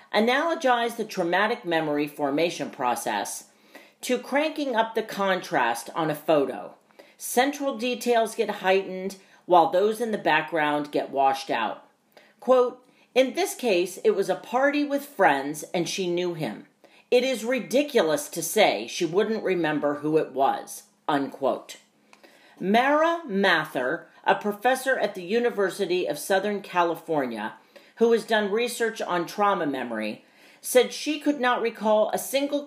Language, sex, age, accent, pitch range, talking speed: English, female, 40-59, American, 165-245 Hz, 140 wpm